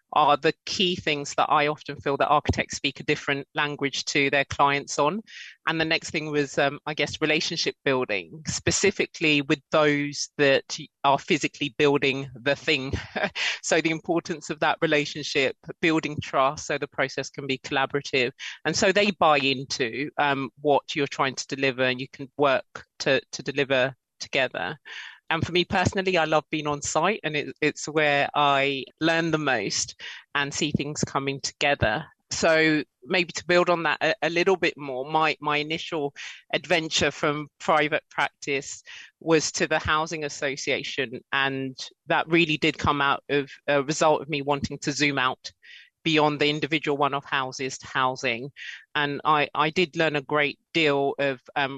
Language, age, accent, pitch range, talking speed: English, 30-49, British, 140-160 Hz, 170 wpm